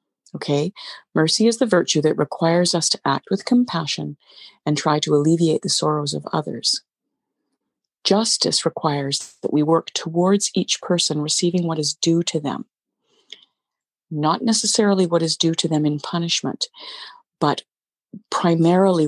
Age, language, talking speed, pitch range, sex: 50-69, English, 140 wpm, 150-190 Hz, female